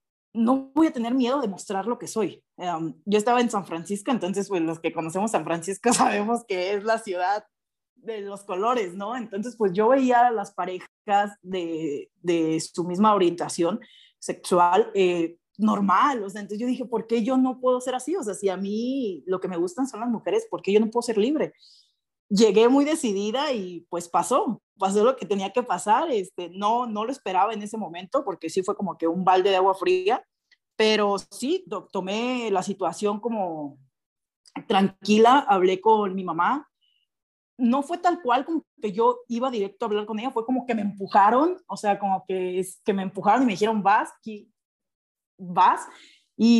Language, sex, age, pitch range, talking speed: Spanish, female, 30-49, 185-240 Hz, 195 wpm